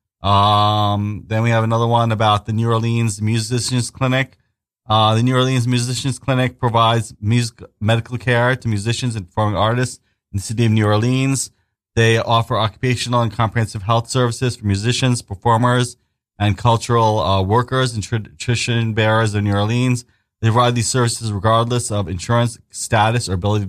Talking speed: 160 wpm